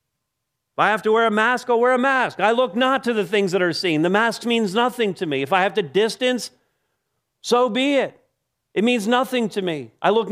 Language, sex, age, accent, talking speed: English, male, 50-69, American, 235 wpm